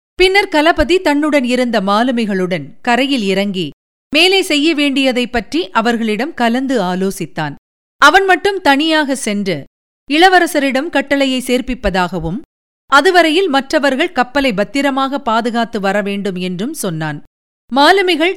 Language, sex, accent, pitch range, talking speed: Tamil, female, native, 200-295 Hz, 100 wpm